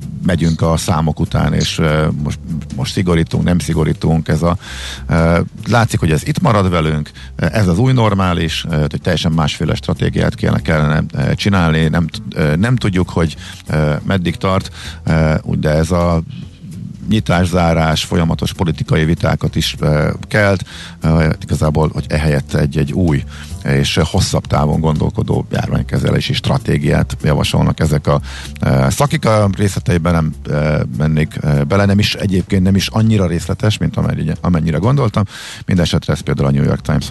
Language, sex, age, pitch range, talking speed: Hungarian, male, 50-69, 75-95 Hz, 140 wpm